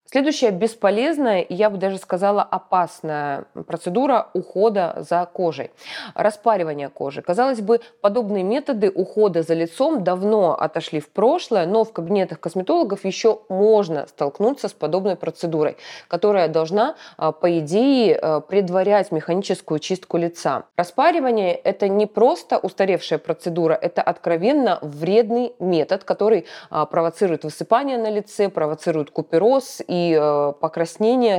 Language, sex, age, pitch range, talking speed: Russian, female, 20-39, 165-215 Hz, 120 wpm